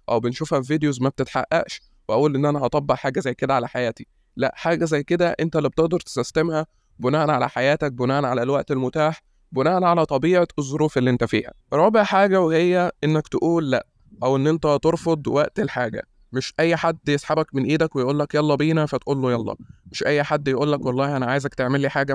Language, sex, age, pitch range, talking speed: Arabic, male, 20-39, 130-155 Hz, 195 wpm